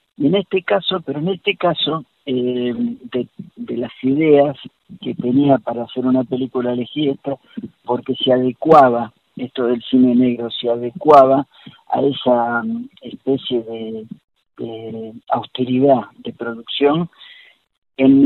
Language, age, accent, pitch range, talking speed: Spanish, 50-69, Argentinian, 120-145 Hz, 125 wpm